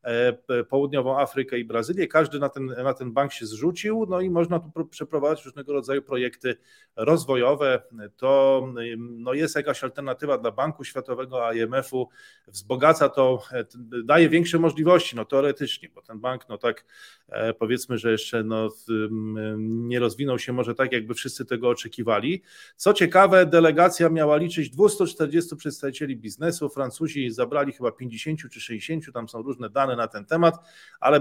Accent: native